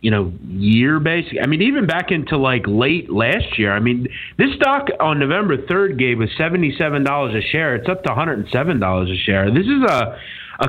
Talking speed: 230 wpm